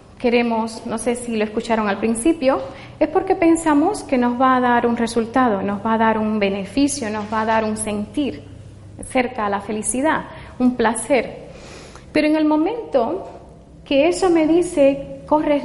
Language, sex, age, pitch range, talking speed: Spanish, female, 30-49, 235-310 Hz, 175 wpm